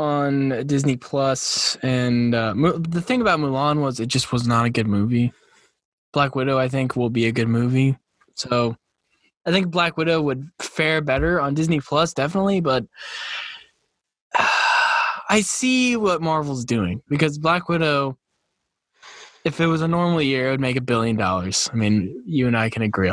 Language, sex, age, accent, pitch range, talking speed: English, male, 10-29, American, 120-160 Hz, 170 wpm